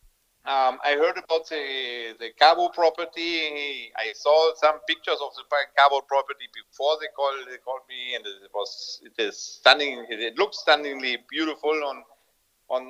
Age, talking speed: 50-69, 160 wpm